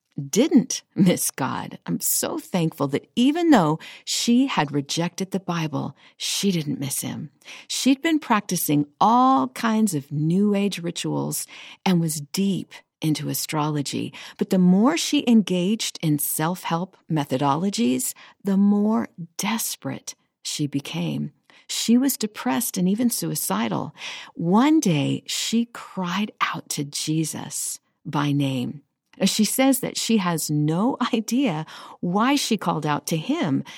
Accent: American